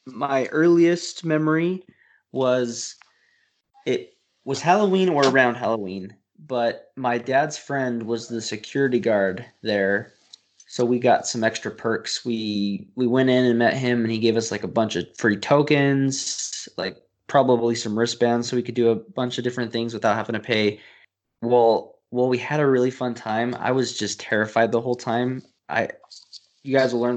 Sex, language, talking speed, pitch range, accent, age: male, English, 175 wpm, 110-130 Hz, American, 20-39